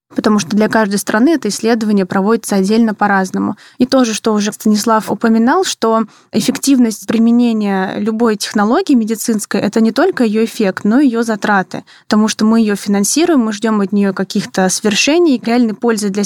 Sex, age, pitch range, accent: female, 20-39, 205-235 Hz, native